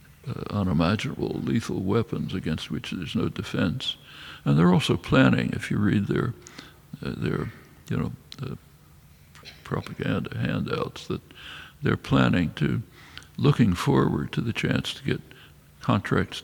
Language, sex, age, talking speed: English, male, 60-79, 130 wpm